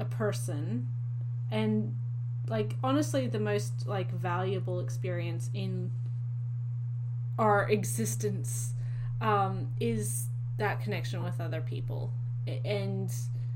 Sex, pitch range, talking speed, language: female, 115-120 Hz, 95 wpm, English